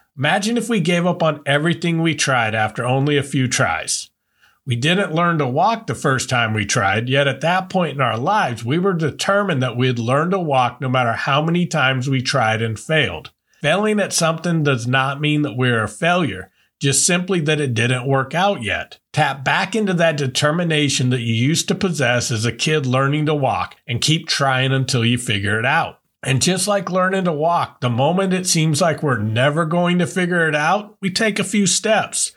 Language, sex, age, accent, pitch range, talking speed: English, male, 40-59, American, 130-175 Hz, 210 wpm